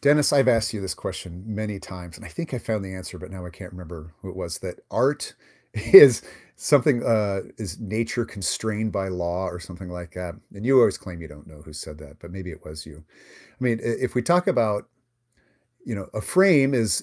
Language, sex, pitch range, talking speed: English, male, 90-120 Hz, 220 wpm